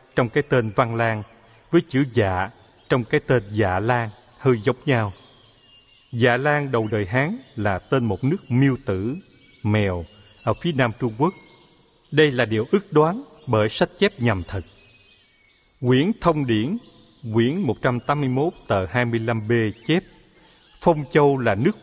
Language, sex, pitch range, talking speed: Vietnamese, male, 115-140 Hz, 150 wpm